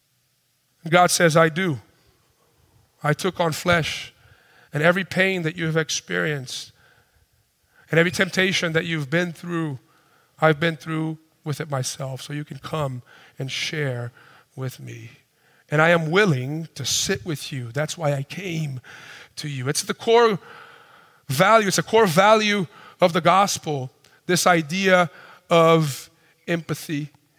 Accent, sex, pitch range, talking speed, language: American, male, 155-195 Hz, 140 wpm, English